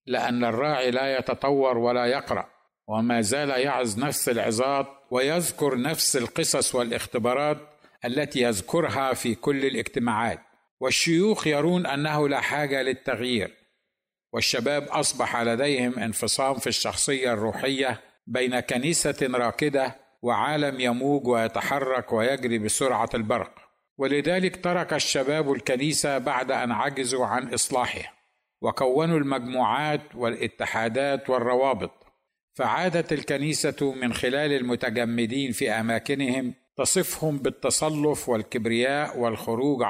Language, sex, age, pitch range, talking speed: Arabic, male, 60-79, 125-145 Hz, 100 wpm